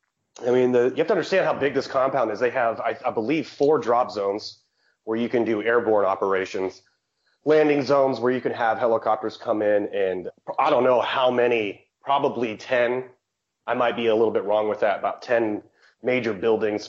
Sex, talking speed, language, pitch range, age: male, 200 wpm, English, 100-125 Hz, 30-49